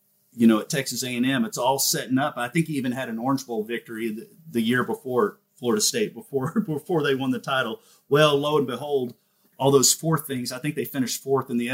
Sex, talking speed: male, 230 wpm